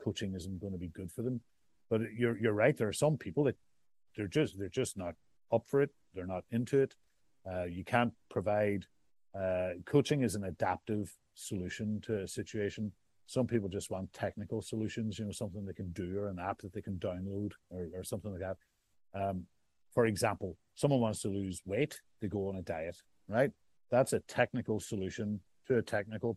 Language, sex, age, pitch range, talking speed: English, male, 50-69, 95-115 Hz, 200 wpm